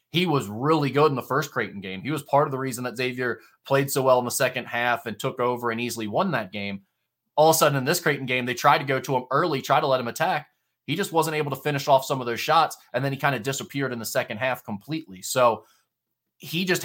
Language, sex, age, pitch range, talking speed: English, male, 20-39, 115-140 Hz, 275 wpm